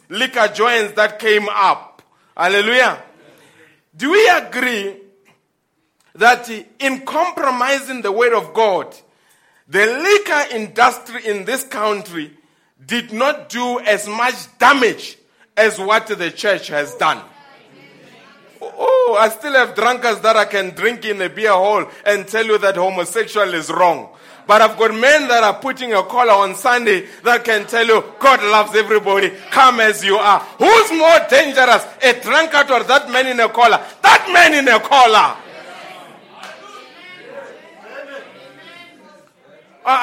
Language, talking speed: English, 140 wpm